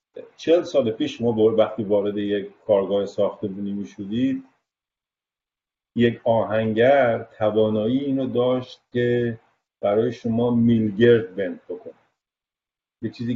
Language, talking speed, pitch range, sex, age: Persian, 110 wpm, 110-130 Hz, male, 50-69